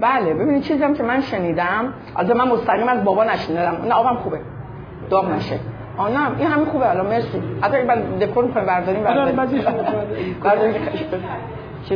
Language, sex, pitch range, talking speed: Persian, female, 175-240 Hz, 145 wpm